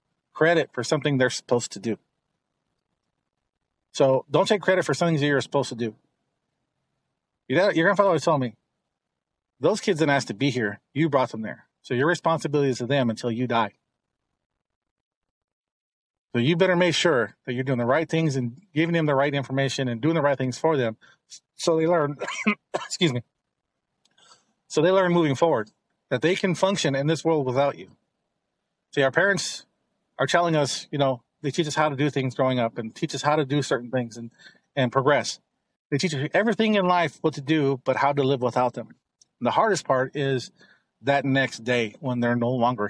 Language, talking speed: English, 195 wpm